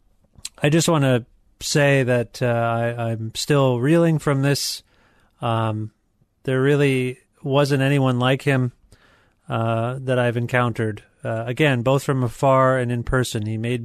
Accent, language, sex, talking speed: American, English, male, 145 wpm